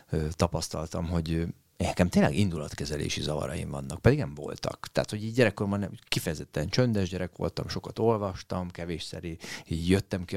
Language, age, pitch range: Hungarian, 30-49, 85-105 Hz